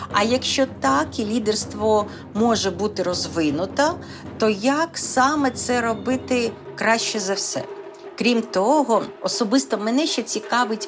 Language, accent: Ukrainian, native